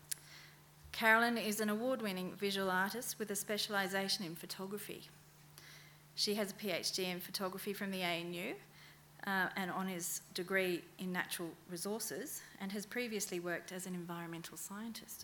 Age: 40-59